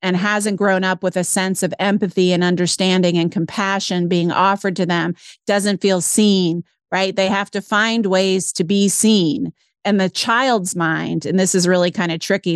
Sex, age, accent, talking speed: female, 40-59, American, 190 wpm